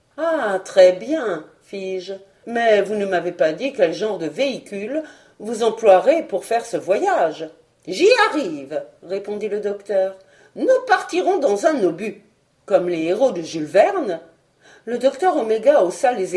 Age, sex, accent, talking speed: 50-69, female, French, 175 wpm